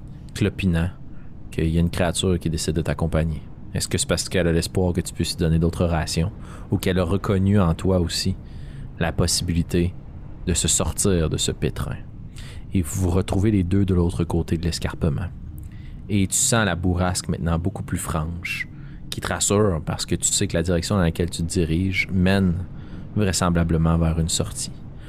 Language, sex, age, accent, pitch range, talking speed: French, male, 30-49, Canadian, 90-105 Hz, 190 wpm